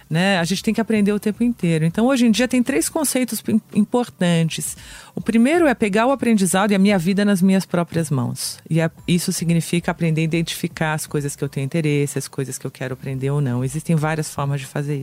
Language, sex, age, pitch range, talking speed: English, female, 40-59, 150-195 Hz, 225 wpm